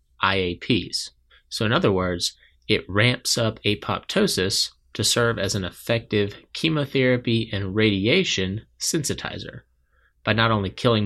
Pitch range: 90-115 Hz